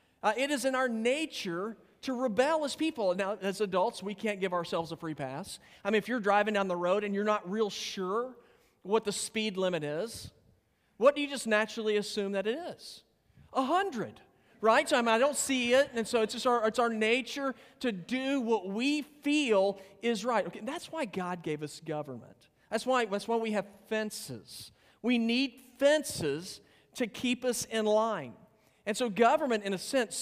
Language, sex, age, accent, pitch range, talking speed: English, male, 40-59, American, 155-230 Hz, 200 wpm